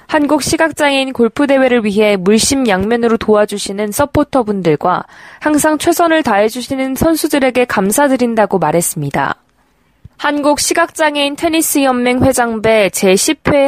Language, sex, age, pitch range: Korean, female, 20-39, 210-275 Hz